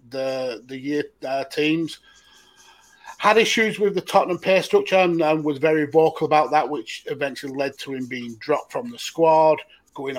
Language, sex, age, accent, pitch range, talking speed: English, male, 30-49, British, 135-155 Hz, 175 wpm